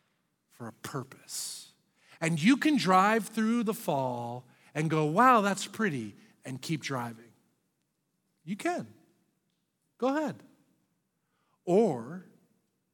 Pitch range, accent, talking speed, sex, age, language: 140-225 Hz, American, 100 wpm, male, 50-69, English